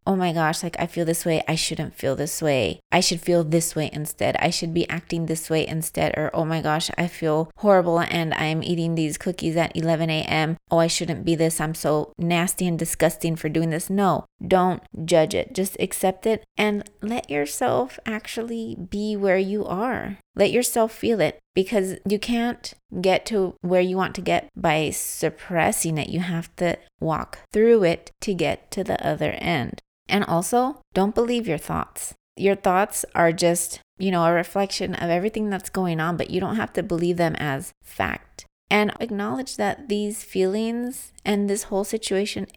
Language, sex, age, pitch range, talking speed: English, female, 30-49, 165-205 Hz, 190 wpm